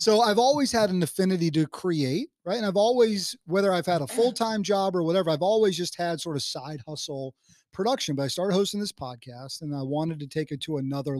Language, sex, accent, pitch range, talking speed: English, male, American, 135-185 Hz, 230 wpm